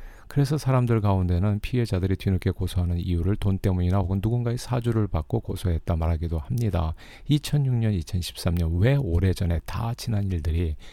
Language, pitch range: Korean, 90-110 Hz